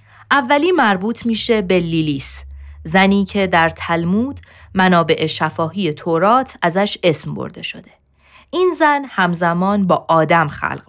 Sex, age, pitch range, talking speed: female, 20-39, 155-220 Hz, 120 wpm